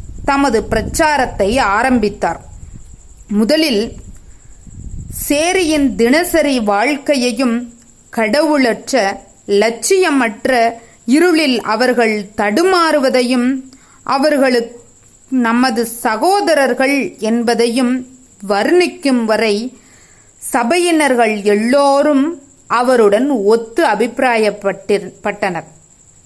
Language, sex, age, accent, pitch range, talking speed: Tamil, female, 30-49, native, 220-295 Hz, 55 wpm